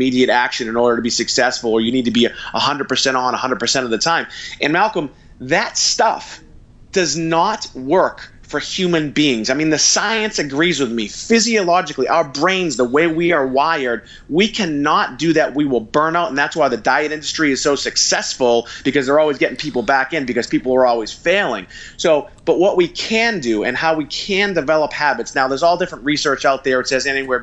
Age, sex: 30-49, male